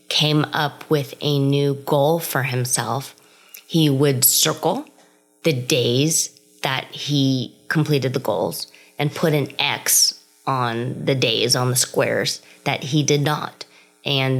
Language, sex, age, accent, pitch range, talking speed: English, female, 20-39, American, 125-160 Hz, 140 wpm